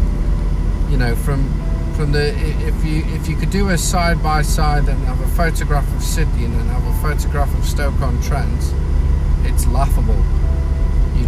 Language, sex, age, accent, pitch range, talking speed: English, male, 40-59, British, 70-80 Hz, 160 wpm